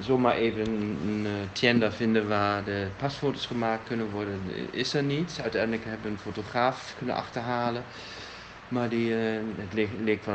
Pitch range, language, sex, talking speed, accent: 95-120 Hz, Dutch, male, 175 wpm, German